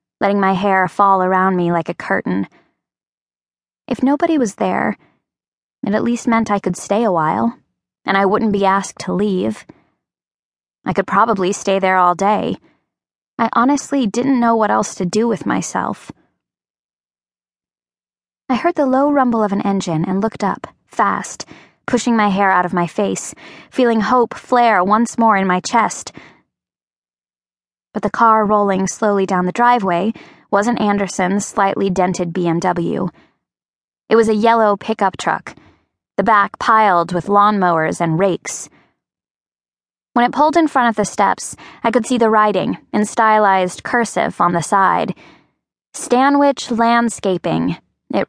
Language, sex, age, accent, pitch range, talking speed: English, female, 20-39, American, 175-230 Hz, 150 wpm